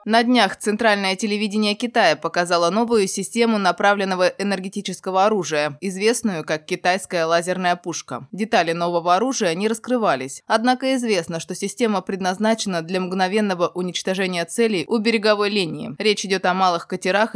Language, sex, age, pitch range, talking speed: Russian, female, 20-39, 180-220 Hz, 130 wpm